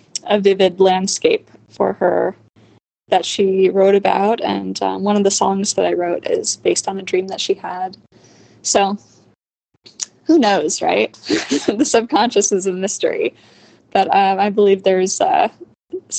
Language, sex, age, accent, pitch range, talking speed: English, female, 20-39, American, 185-235 Hz, 155 wpm